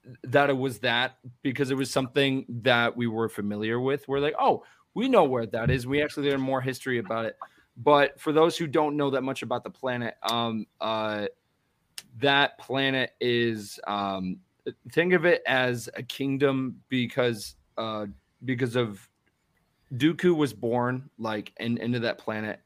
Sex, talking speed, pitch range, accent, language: male, 165 wpm, 110-135 Hz, American, English